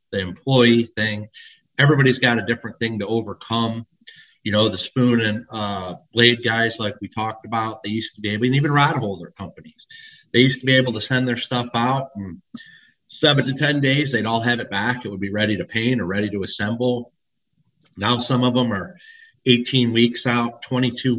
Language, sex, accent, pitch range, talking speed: English, male, American, 105-125 Hz, 200 wpm